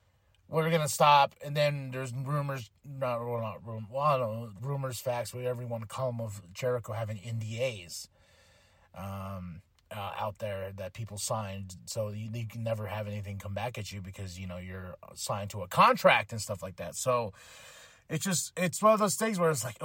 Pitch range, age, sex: 110-180 Hz, 30-49, male